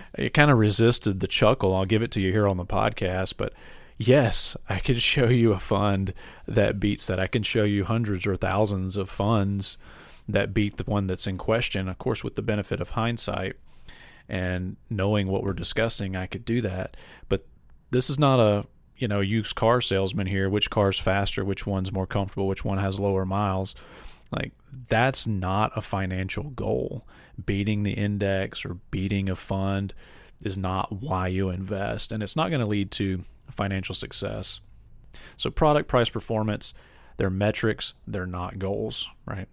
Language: English